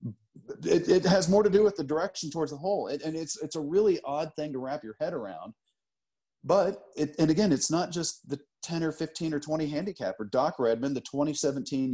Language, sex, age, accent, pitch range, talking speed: English, male, 40-59, American, 115-150 Hz, 215 wpm